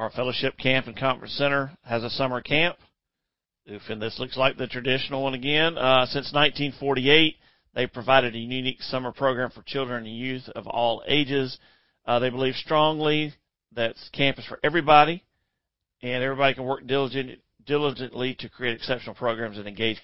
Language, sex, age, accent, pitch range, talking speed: English, male, 40-59, American, 120-150 Hz, 160 wpm